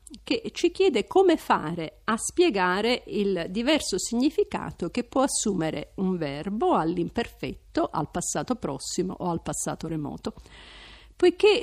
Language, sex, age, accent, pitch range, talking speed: Italian, female, 50-69, native, 170-240 Hz, 125 wpm